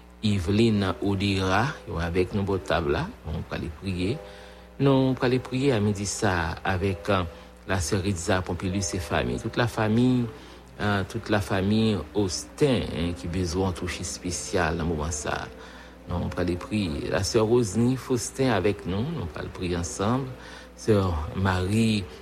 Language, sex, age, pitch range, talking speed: English, male, 60-79, 90-105 Hz, 170 wpm